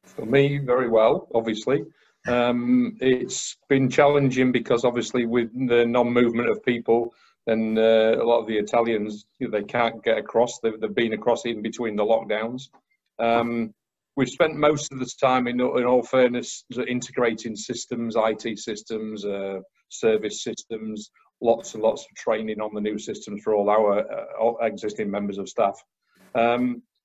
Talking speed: 160 wpm